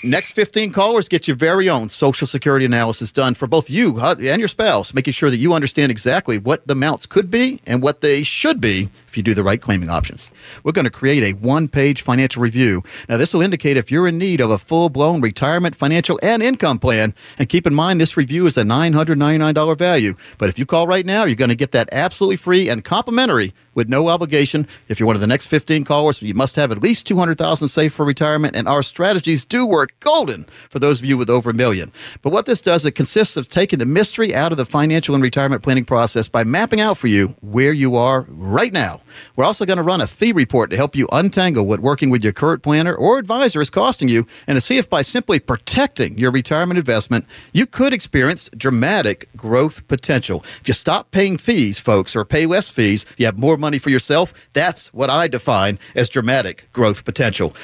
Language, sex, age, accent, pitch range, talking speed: English, male, 50-69, American, 125-175 Hz, 225 wpm